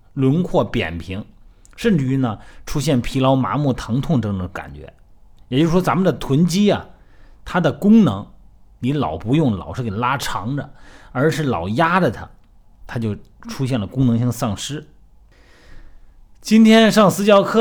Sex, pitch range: male, 105-175 Hz